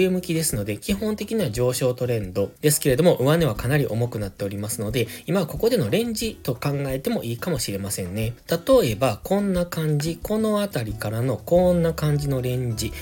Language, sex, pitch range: Japanese, male, 110-165 Hz